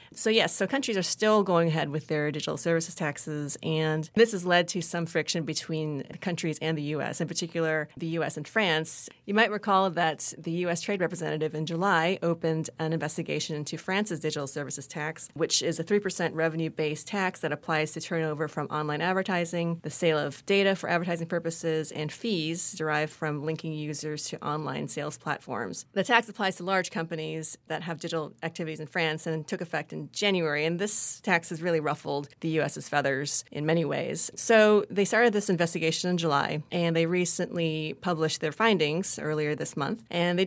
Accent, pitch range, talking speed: American, 155-180 Hz, 185 wpm